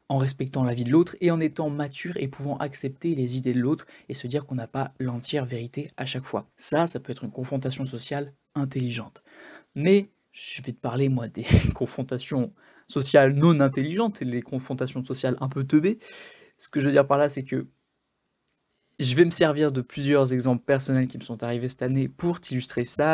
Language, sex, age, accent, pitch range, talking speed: French, male, 20-39, French, 130-155 Hz, 205 wpm